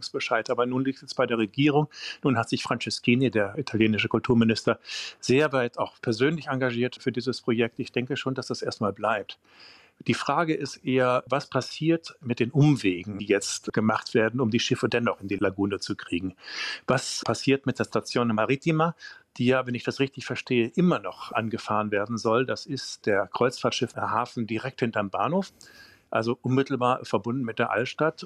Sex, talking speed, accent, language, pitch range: male, 180 wpm, German, German, 115-140 Hz